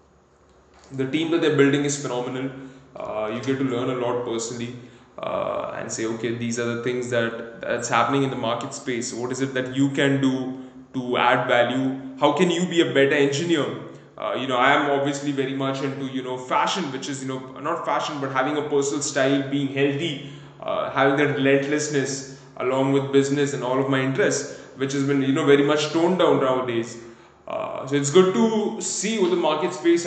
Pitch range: 130-145 Hz